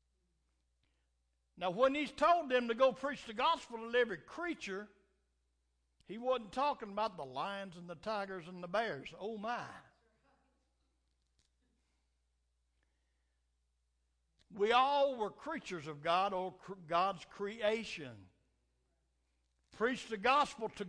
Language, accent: English, American